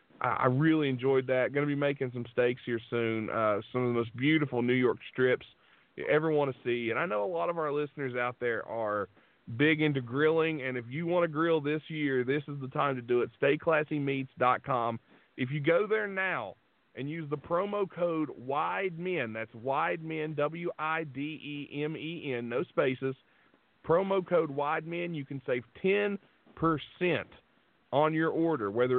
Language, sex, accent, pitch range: English, male, American, 125-160 Hz